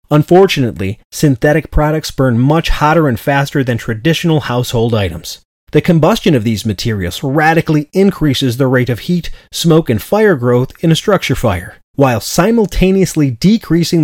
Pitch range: 125-160 Hz